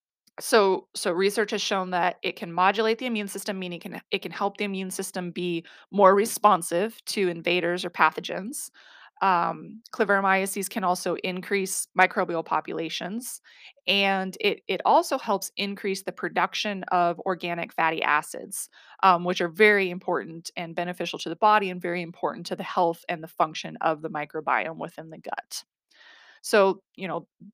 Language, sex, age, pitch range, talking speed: English, female, 20-39, 175-205 Hz, 165 wpm